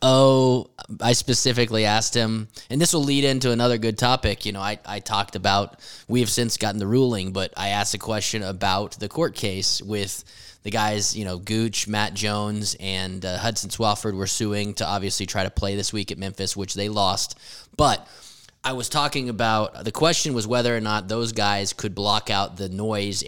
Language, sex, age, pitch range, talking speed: English, male, 20-39, 100-125 Hz, 200 wpm